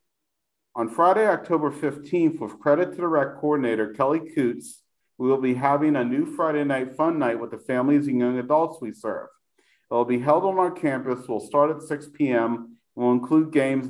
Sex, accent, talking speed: male, American, 195 wpm